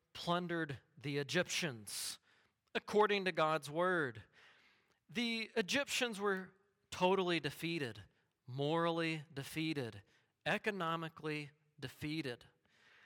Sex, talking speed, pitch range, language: male, 75 wpm, 140-175 Hz, English